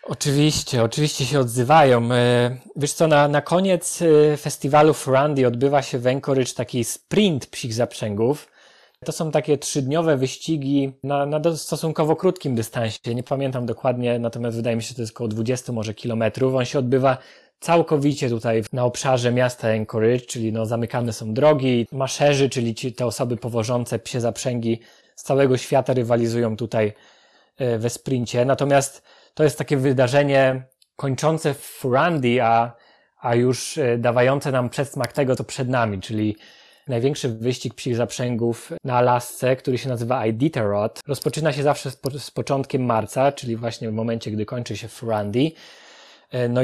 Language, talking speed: Polish, 150 wpm